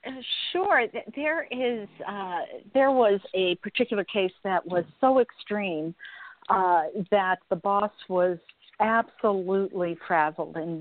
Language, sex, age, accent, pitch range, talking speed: English, female, 50-69, American, 170-205 Hz, 115 wpm